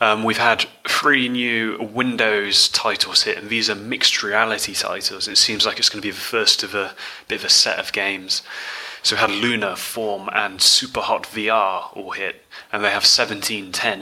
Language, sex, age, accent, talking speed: English, male, 20-39, British, 195 wpm